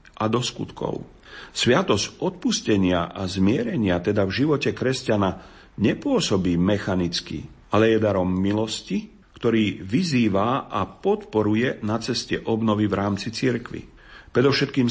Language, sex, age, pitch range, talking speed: Slovak, male, 40-59, 95-115 Hz, 110 wpm